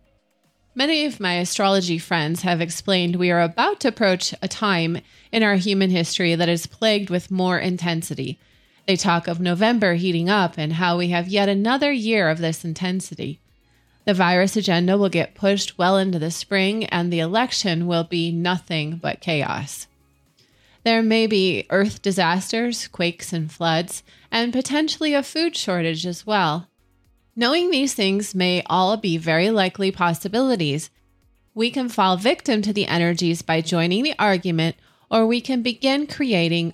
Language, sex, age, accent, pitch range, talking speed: English, female, 20-39, American, 170-225 Hz, 160 wpm